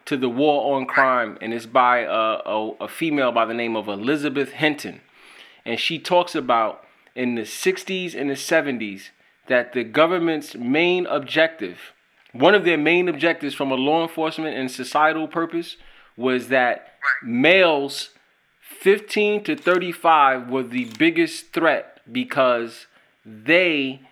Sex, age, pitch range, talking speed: male, 30-49, 120-155 Hz, 140 wpm